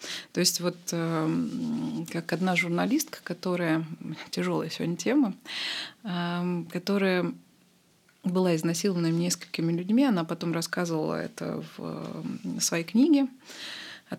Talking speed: 95 wpm